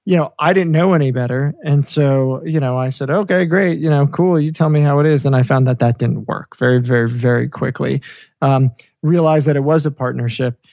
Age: 20-39